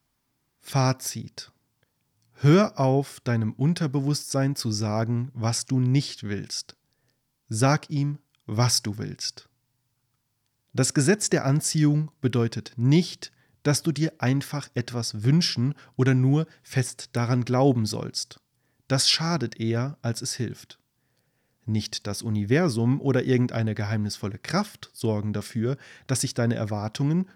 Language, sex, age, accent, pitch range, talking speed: German, male, 30-49, German, 115-145 Hz, 115 wpm